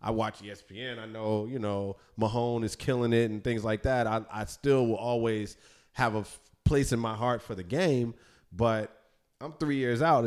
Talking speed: 200 wpm